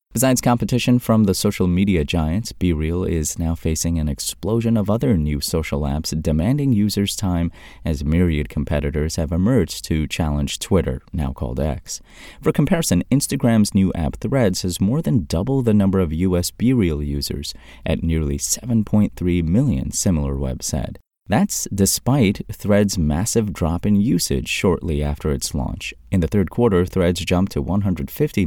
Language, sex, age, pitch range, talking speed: English, male, 30-49, 75-105 Hz, 155 wpm